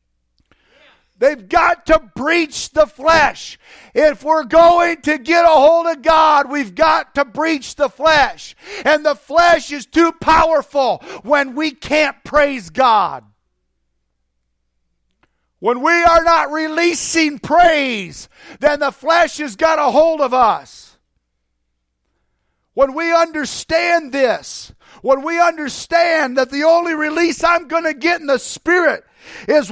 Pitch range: 275-325 Hz